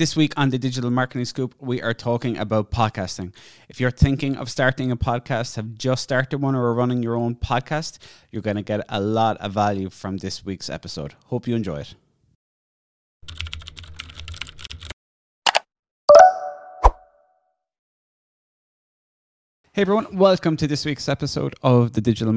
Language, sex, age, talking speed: English, male, 20-39, 150 wpm